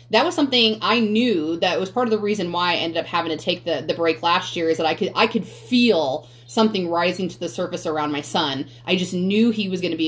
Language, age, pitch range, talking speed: English, 30-49, 160-220 Hz, 275 wpm